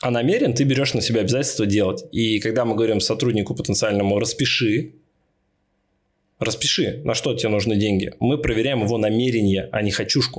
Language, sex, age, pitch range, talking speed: Russian, male, 20-39, 100-125 Hz, 160 wpm